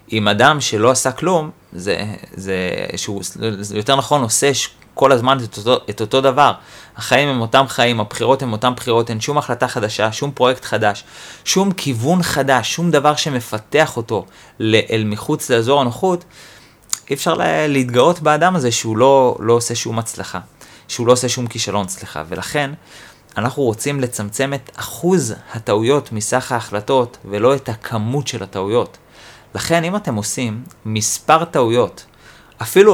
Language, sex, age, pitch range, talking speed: Hebrew, male, 30-49, 105-135 Hz, 155 wpm